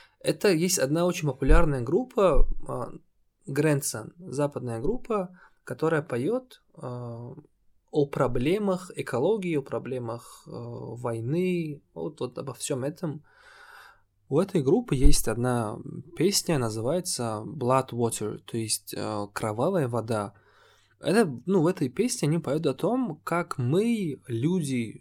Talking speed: 110 wpm